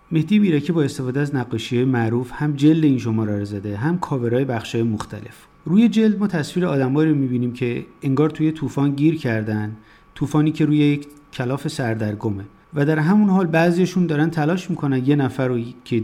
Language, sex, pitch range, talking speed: Persian, male, 115-155 Hz, 185 wpm